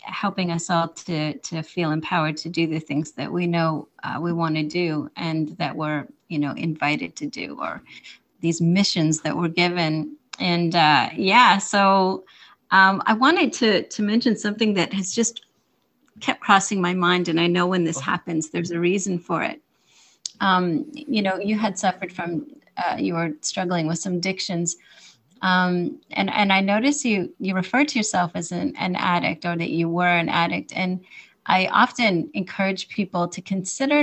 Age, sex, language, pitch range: 30-49, female, English, 170-205 Hz